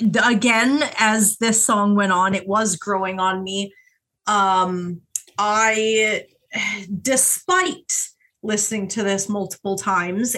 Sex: female